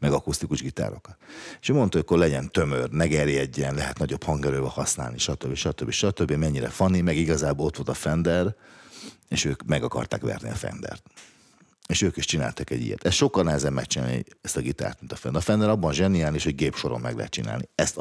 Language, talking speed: Hungarian, 210 wpm